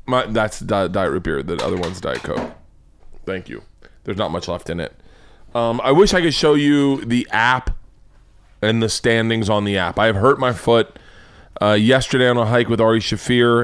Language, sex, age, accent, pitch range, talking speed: English, male, 20-39, American, 100-135 Hz, 200 wpm